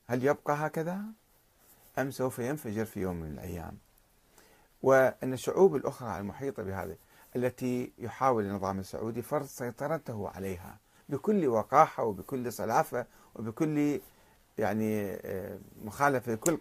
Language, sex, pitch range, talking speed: Arabic, male, 100-130 Hz, 110 wpm